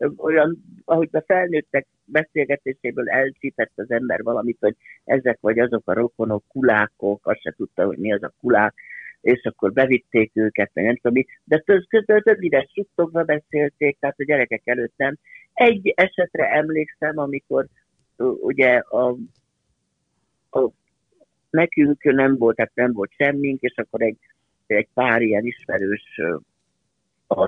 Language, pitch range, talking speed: Hungarian, 110-165 Hz, 140 wpm